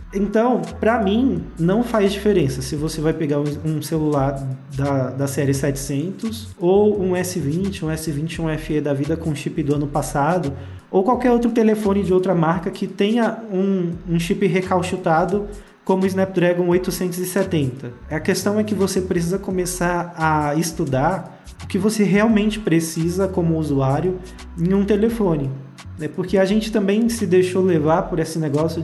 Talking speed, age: 155 wpm, 20-39